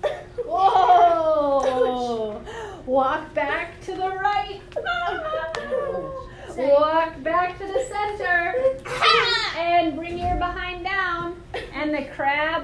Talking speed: 85 wpm